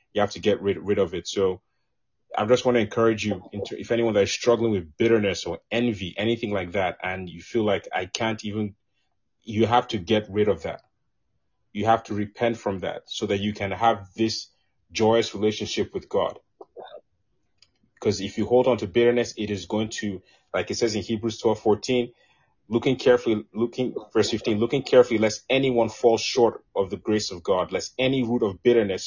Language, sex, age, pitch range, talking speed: English, male, 30-49, 95-115 Hz, 200 wpm